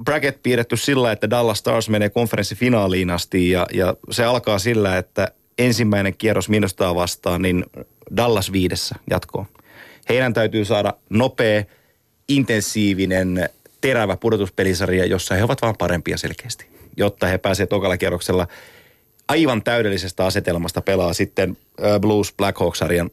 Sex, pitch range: male, 90-115 Hz